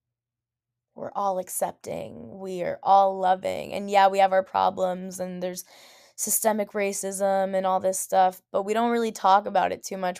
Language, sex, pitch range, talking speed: English, female, 170-205 Hz, 175 wpm